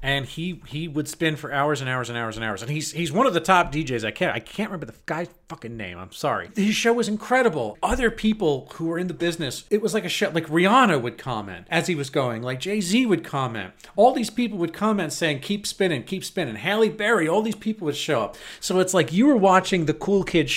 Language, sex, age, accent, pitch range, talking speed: English, male, 40-59, American, 135-185 Hz, 255 wpm